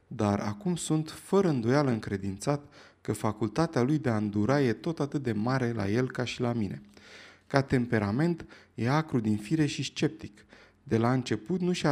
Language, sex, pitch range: Romanian, male, 110-150 Hz